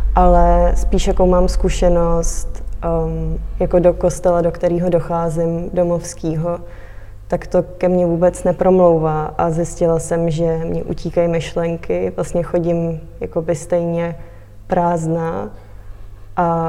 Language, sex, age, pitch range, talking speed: Czech, female, 20-39, 155-180 Hz, 110 wpm